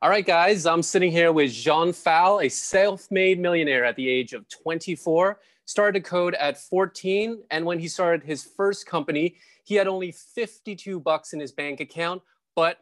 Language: English